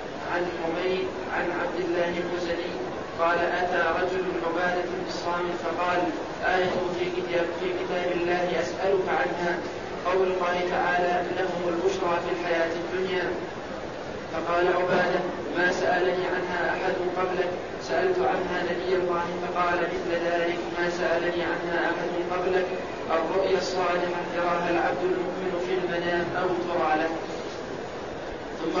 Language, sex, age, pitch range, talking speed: Arabic, male, 40-59, 175-185 Hz, 120 wpm